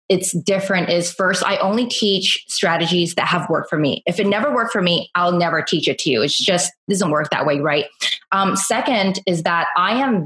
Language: English